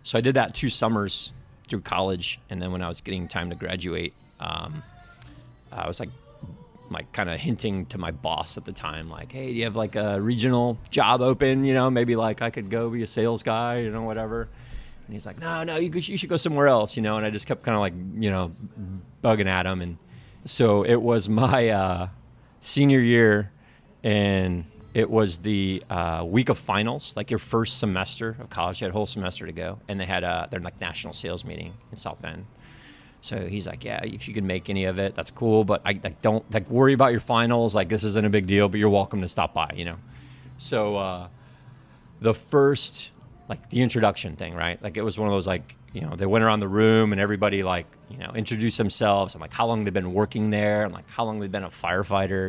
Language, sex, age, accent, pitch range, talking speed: English, male, 30-49, American, 95-115 Hz, 230 wpm